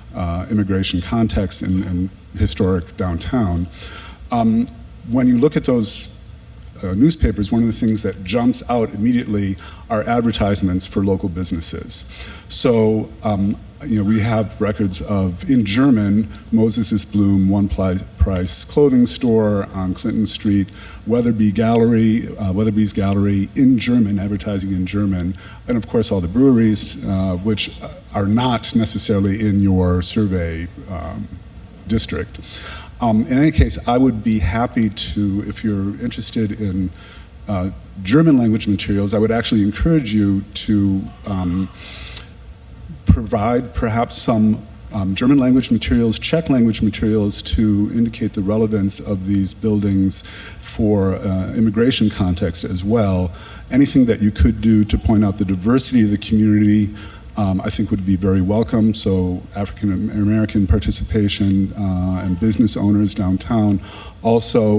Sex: male